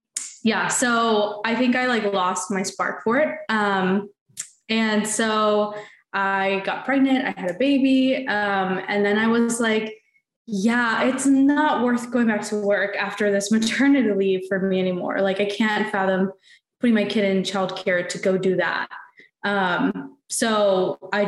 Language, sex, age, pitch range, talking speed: English, female, 20-39, 190-235 Hz, 165 wpm